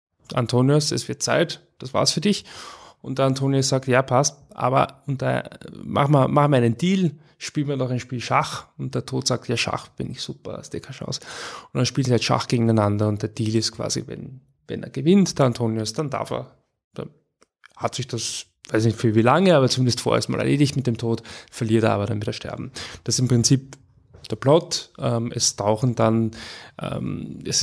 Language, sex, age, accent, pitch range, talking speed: German, male, 20-39, German, 115-135 Hz, 210 wpm